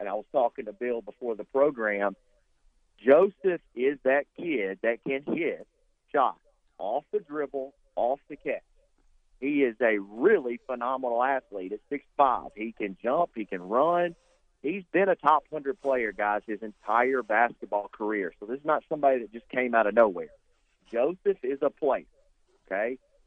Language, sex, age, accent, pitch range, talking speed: English, male, 40-59, American, 115-160 Hz, 165 wpm